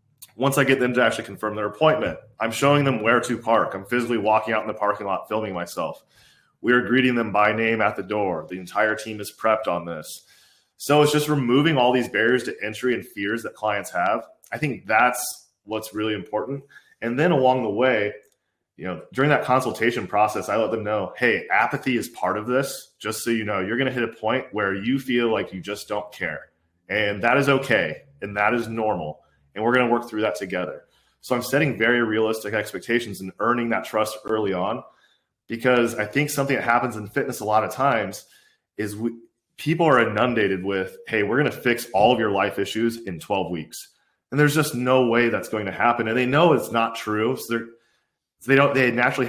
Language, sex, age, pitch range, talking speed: English, male, 20-39, 105-125 Hz, 215 wpm